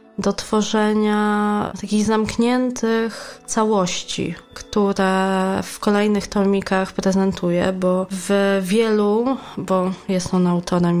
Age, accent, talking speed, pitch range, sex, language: 20-39, native, 95 wpm, 190-220 Hz, female, Polish